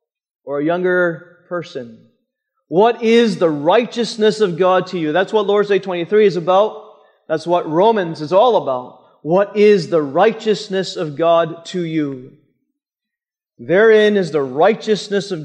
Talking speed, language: 150 wpm, English